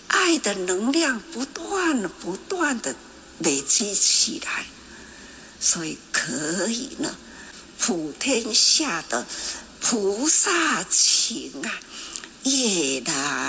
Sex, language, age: female, Chinese, 60-79